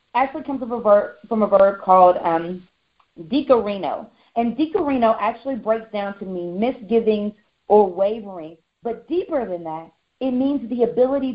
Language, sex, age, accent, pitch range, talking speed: English, female, 40-59, American, 210-275 Hz, 155 wpm